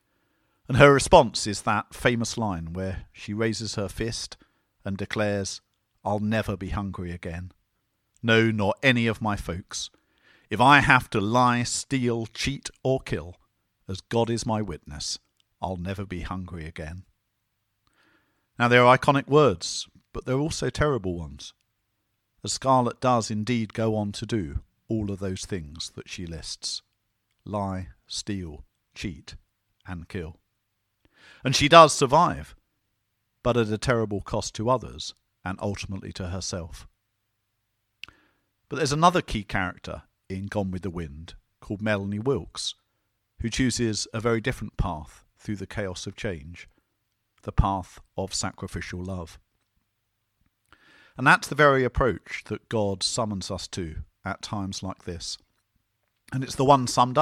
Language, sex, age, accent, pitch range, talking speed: English, male, 50-69, British, 95-115 Hz, 145 wpm